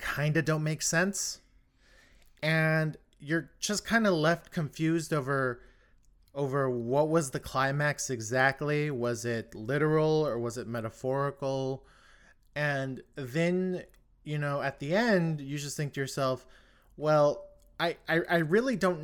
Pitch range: 135-165 Hz